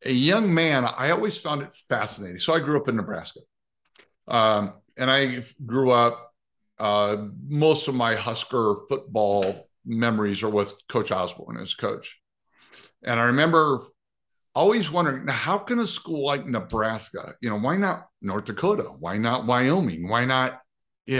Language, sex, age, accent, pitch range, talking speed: English, male, 50-69, American, 110-155 Hz, 155 wpm